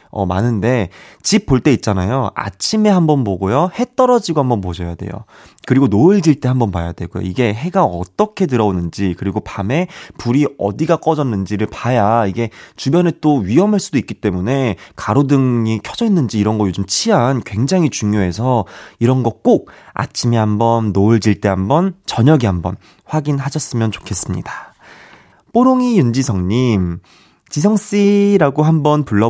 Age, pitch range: 20-39, 105-155 Hz